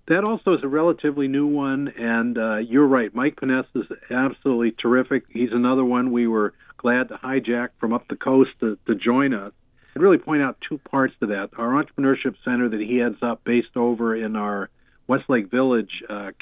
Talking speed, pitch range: 195 wpm, 115-135 Hz